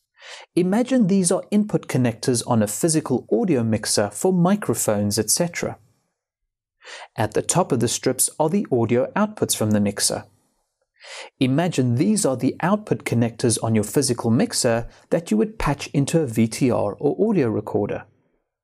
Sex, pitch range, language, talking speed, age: male, 115-185 Hz, English, 150 wpm, 30-49